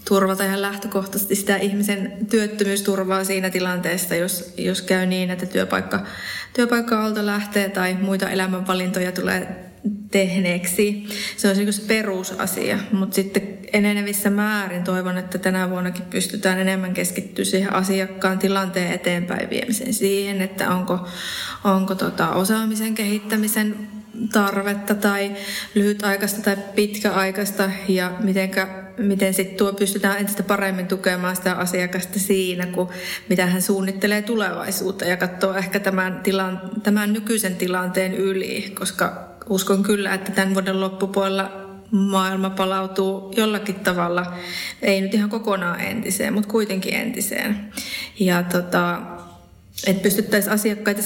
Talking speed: 115 wpm